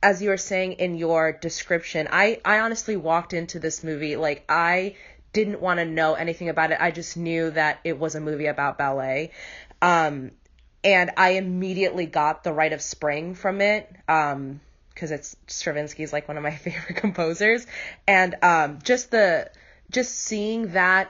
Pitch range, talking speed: 160-190 Hz, 175 wpm